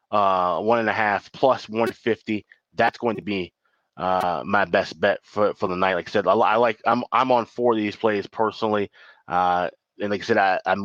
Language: English